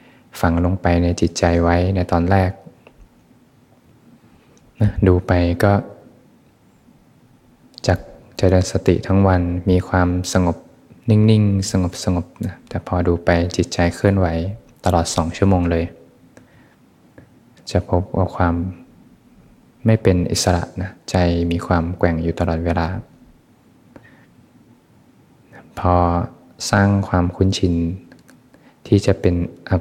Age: 20-39